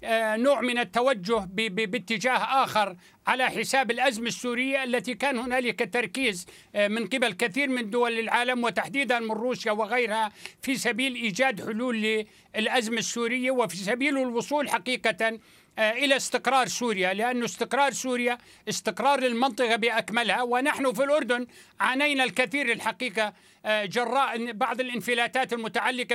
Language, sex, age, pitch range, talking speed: Arabic, male, 60-79, 225-260 Hz, 120 wpm